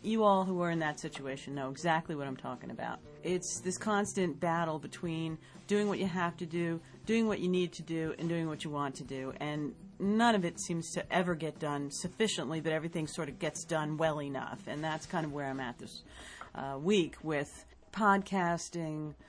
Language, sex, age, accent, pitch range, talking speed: English, female, 40-59, American, 140-180 Hz, 210 wpm